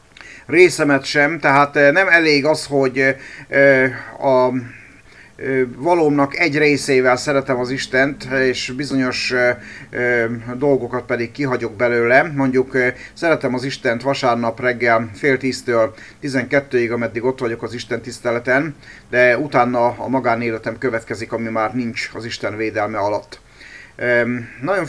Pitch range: 120-140 Hz